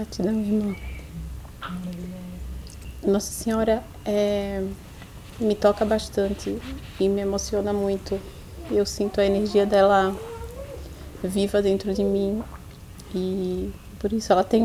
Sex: female